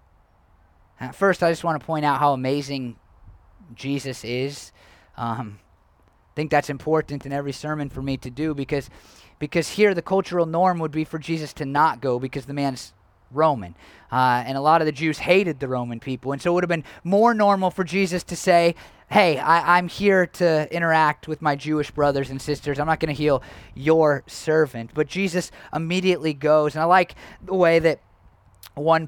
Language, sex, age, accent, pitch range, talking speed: English, male, 30-49, American, 125-165 Hz, 190 wpm